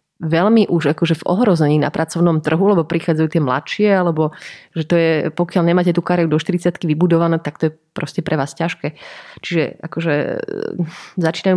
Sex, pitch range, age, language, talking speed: female, 155-180 Hz, 30-49, Slovak, 170 wpm